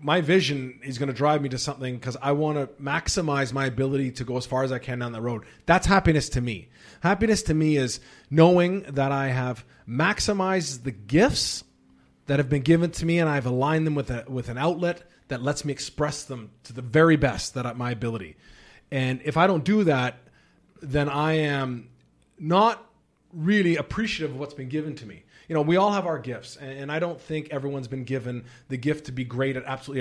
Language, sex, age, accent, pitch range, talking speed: English, male, 30-49, American, 125-160 Hz, 215 wpm